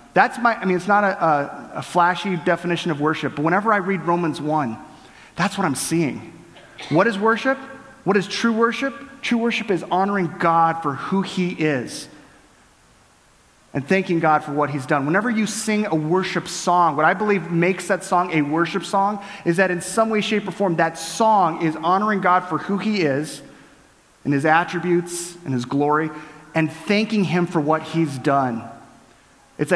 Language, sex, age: English, male, 30-49